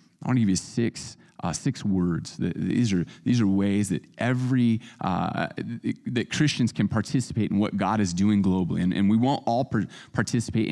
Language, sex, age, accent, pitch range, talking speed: English, male, 30-49, American, 95-125 Hz, 190 wpm